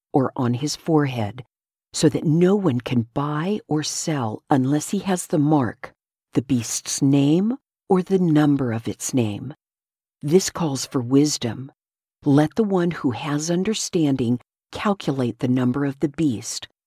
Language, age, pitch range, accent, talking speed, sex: English, 50-69, 130-165 Hz, American, 150 wpm, female